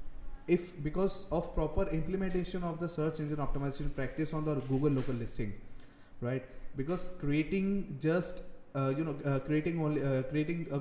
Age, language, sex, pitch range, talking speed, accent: 20-39, English, male, 135-165 Hz, 160 wpm, Indian